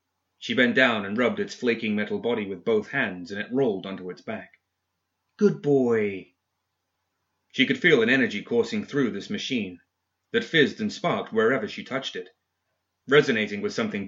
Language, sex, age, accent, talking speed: English, male, 30-49, British, 170 wpm